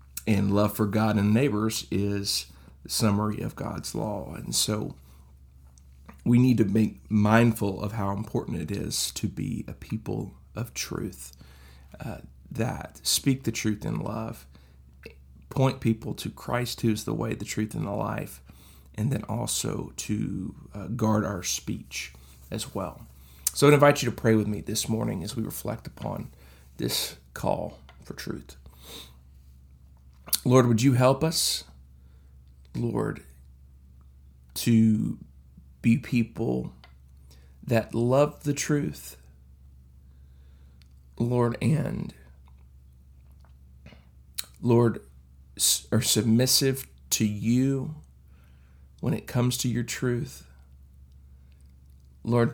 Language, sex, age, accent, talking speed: English, male, 40-59, American, 120 wpm